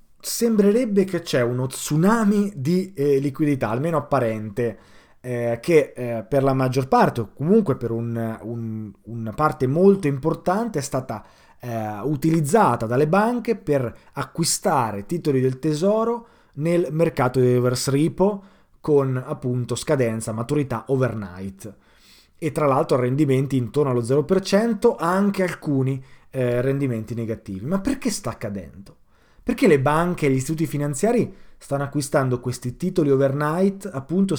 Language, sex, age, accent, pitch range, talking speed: Italian, male, 20-39, native, 120-160 Hz, 135 wpm